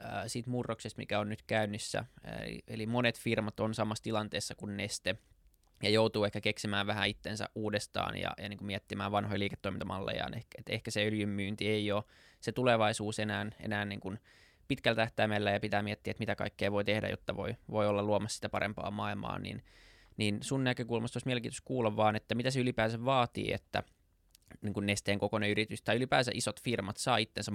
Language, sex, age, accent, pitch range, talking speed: Finnish, male, 20-39, native, 100-110 Hz, 175 wpm